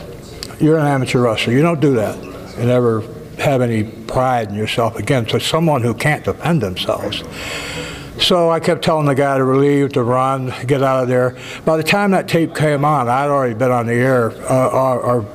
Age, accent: 60-79, American